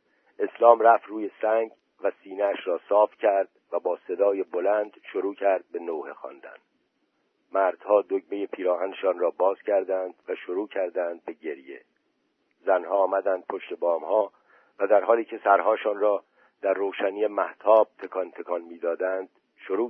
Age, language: 50-69, Persian